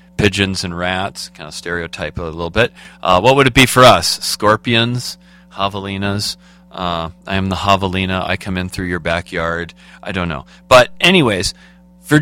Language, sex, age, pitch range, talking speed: English, male, 40-59, 95-145 Hz, 170 wpm